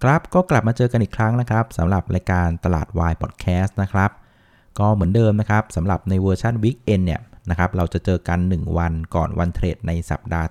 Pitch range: 85-115 Hz